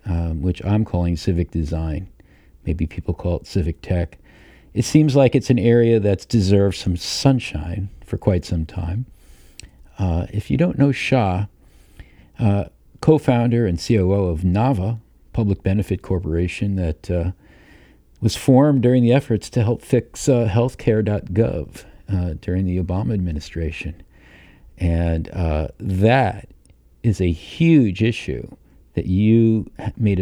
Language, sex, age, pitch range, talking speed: English, male, 50-69, 85-110 Hz, 135 wpm